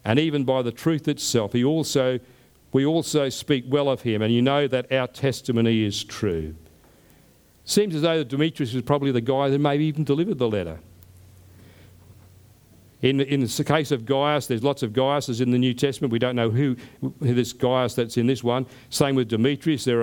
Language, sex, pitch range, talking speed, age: English, male, 115-145 Hz, 190 wpm, 50-69